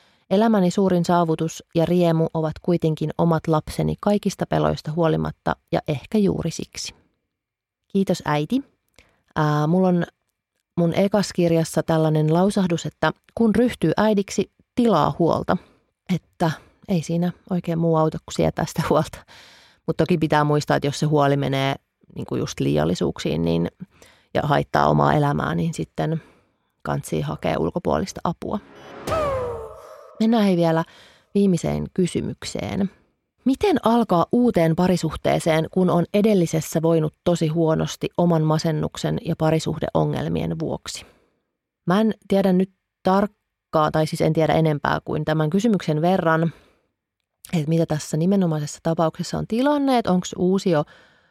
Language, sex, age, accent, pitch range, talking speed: Finnish, female, 30-49, native, 155-190 Hz, 120 wpm